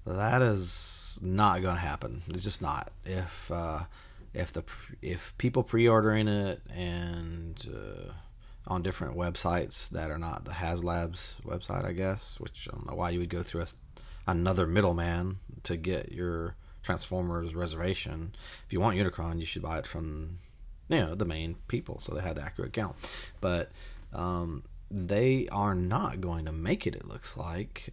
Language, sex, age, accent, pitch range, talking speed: English, male, 30-49, American, 85-100 Hz, 170 wpm